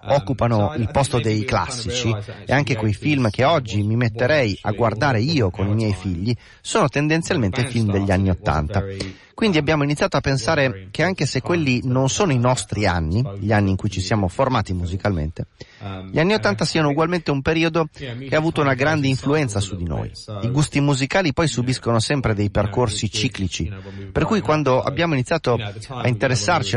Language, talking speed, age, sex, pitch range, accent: Italian, 180 wpm, 30-49, male, 105-140 Hz, native